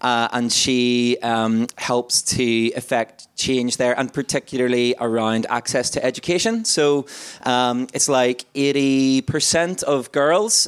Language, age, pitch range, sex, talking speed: English, 20-39, 120-145 Hz, male, 125 wpm